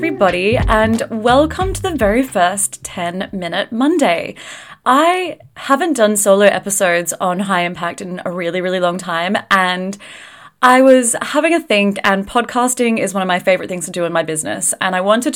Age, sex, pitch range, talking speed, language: 20-39, female, 185-240 Hz, 180 wpm, English